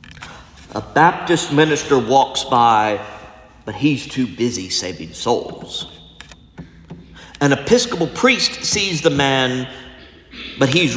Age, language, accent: 50-69, English, American